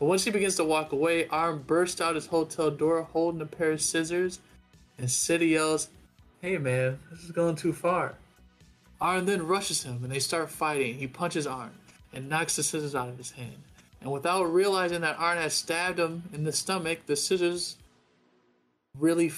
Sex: male